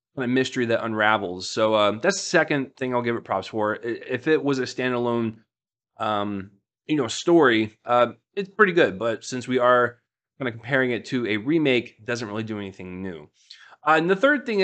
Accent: American